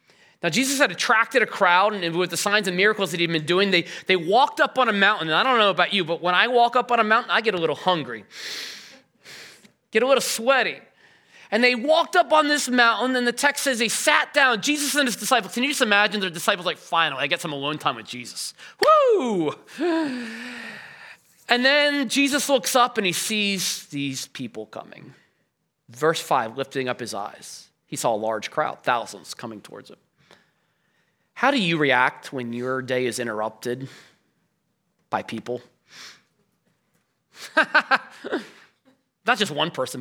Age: 30-49